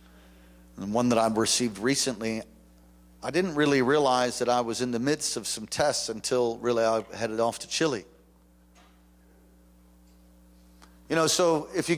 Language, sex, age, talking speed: English, male, 40-59, 155 wpm